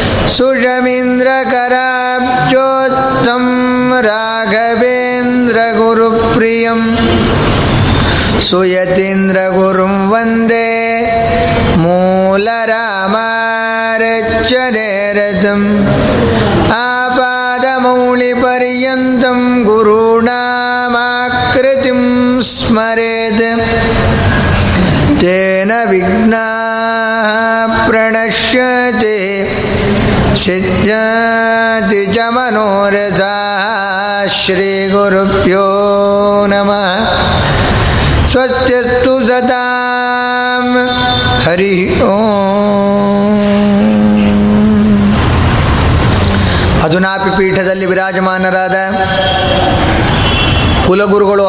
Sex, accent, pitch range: male, native, 190-245 Hz